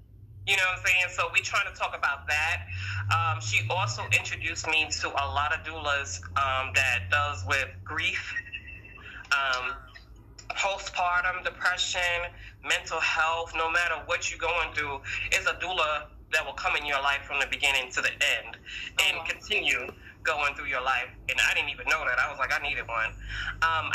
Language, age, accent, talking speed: English, 20-39, American, 180 wpm